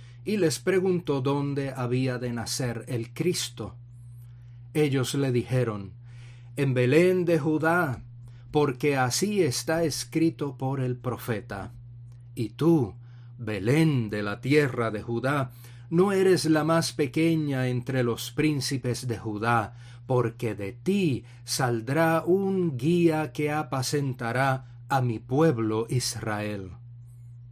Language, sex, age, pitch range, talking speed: English, male, 40-59, 120-150 Hz, 115 wpm